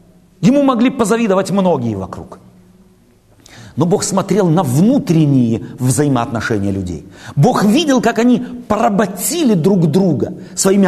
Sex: male